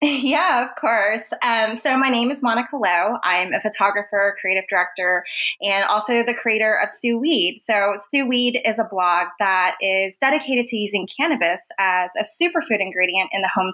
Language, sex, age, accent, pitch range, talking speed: English, female, 20-39, American, 185-235 Hz, 180 wpm